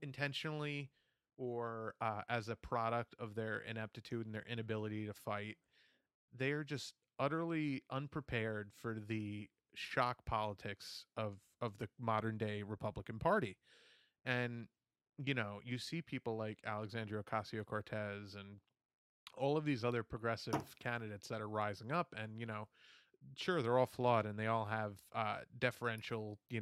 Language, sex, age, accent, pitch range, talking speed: English, male, 30-49, American, 110-130 Hz, 140 wpm